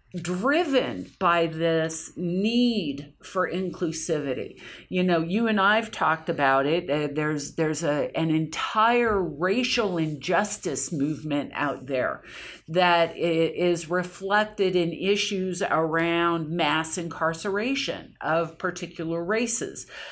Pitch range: 155-195 Hz